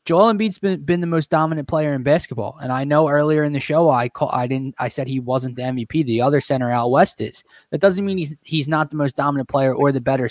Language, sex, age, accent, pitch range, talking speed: English, male, 20-39, American, 130-155 Hz, 270 wpm